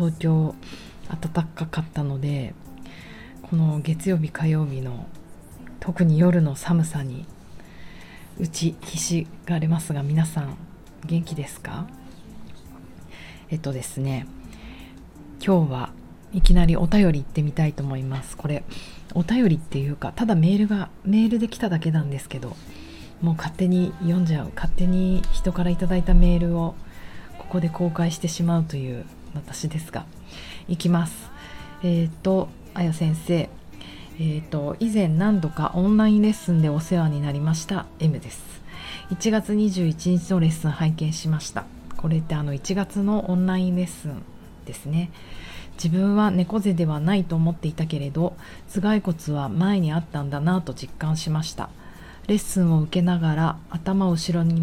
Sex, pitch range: female, 150-180 Hz